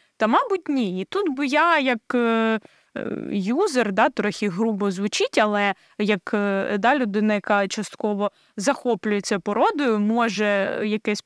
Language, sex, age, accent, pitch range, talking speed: Ukrainian, female, 20-39, native, 215-275 Hz, 135 wpm